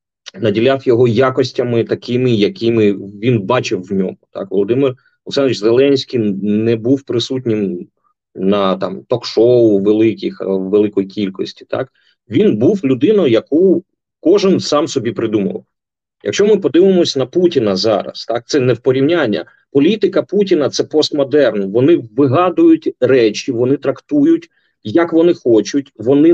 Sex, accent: male, native